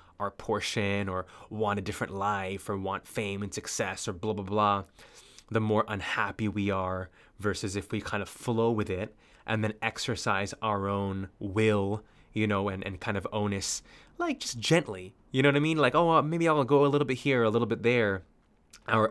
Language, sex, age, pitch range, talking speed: English, male, 20-39, 100-115 Hz, 205 wpm